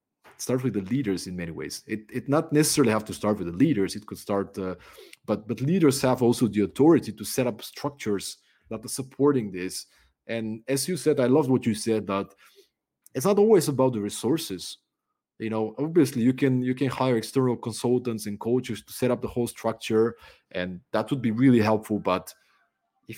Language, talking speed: English, 200 wpm